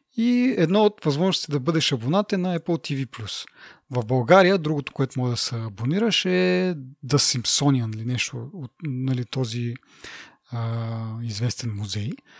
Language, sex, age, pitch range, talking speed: Bulgarian, male, 30-49, 125-165 Hz, 140 wpm